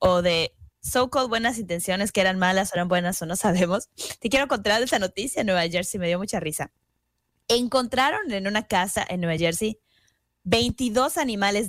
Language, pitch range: Spanish, 190-260 Hz